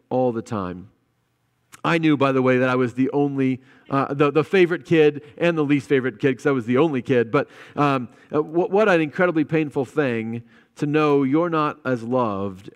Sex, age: male, 40-59